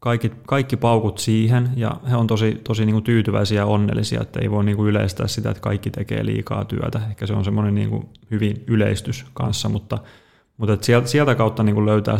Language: Finnish